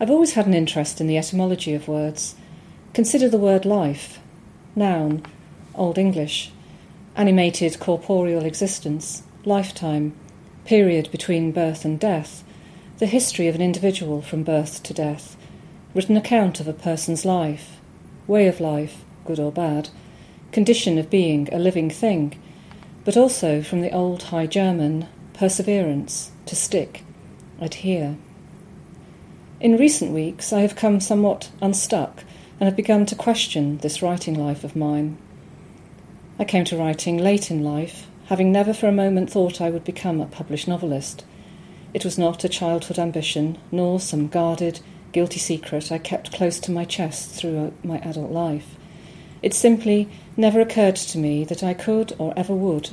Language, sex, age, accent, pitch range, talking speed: English, female, 40-59, British, 160-190 Hz, 150 wpm